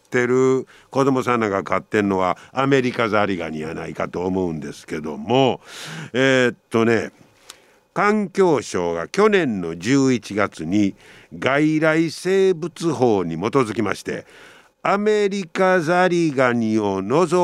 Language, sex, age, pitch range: Japanese, male, 50-69, 120-195 Hz